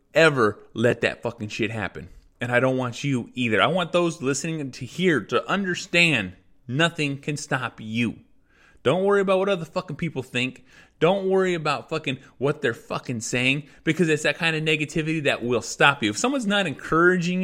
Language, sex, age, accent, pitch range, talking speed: English, male, 20-39, American, 125-155 Hz, 185 wpm